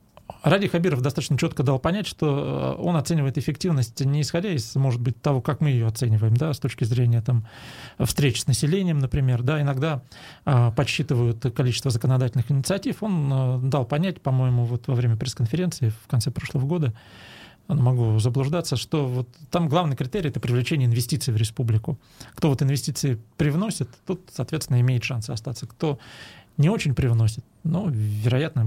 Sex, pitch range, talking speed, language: male, 120-155 Hz, 160 wpm, Russian